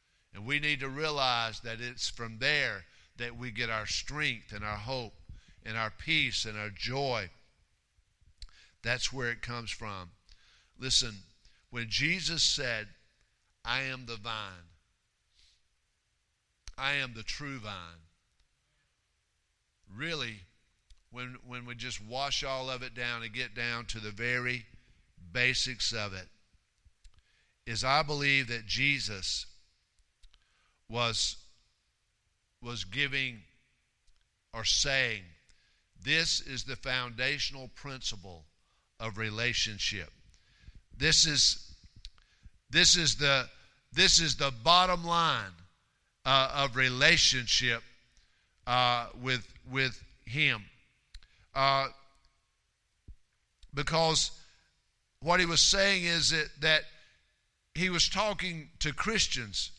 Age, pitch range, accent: 50-69, 105-140 Hz, American